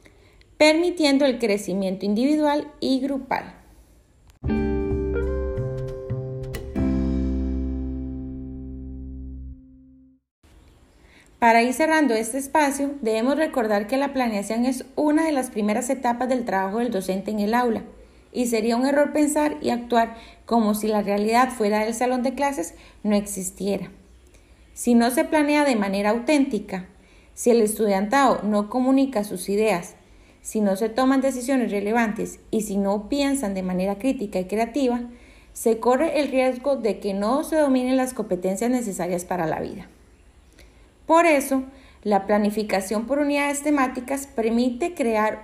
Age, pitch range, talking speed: 30-49, 190-265 Hz, 130 wpm